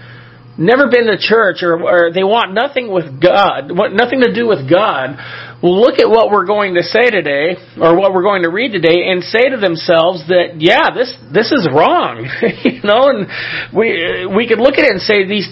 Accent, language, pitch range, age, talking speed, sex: American, English, 150-230 Hz, 40-59, 210 wpm, male